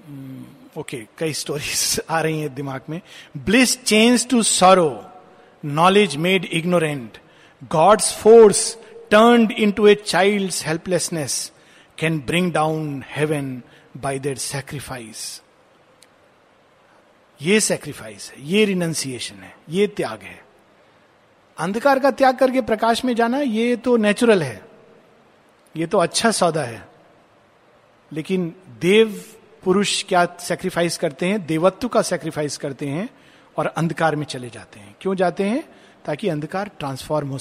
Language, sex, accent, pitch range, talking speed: Hindi, male, native, 150-220 Hz, 130 wpm